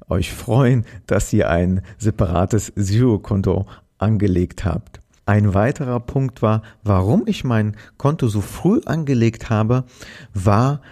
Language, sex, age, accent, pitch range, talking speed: German, male, 50-69, German, 100-125 Hz, 120 wpm